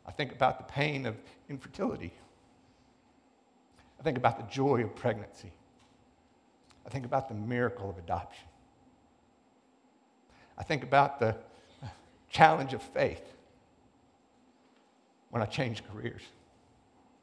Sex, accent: male, American